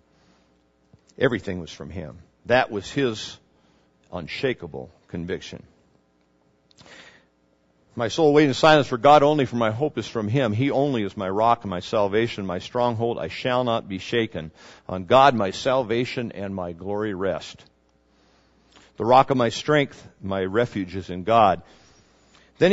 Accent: American